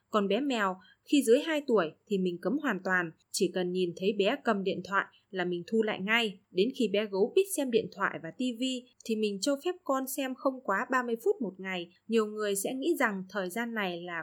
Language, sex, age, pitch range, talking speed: Vietnamese, female, 20-39, 195-255 Hz, 235 wpm